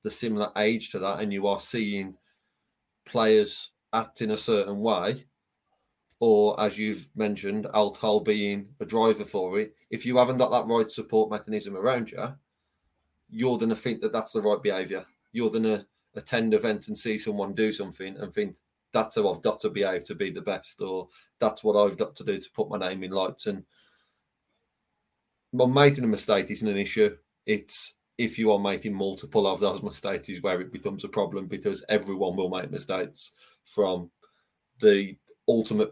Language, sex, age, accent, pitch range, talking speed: English, male, 30-49, British, 100-115 Hz, 185 wpm